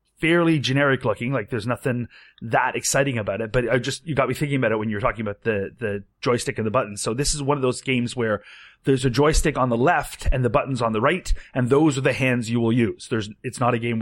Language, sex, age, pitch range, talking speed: English, male, 30-49, 120-155 Hz, 265 wpm